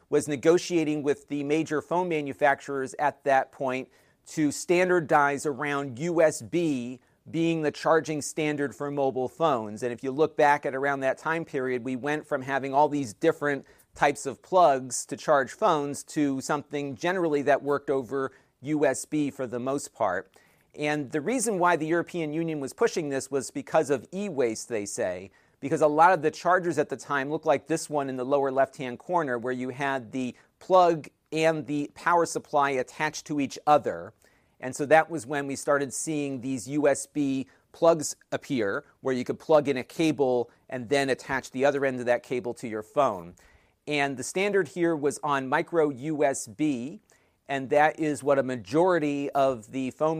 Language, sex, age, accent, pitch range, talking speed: English, male, 40-59, American, 130-155 Hz, 180 wpm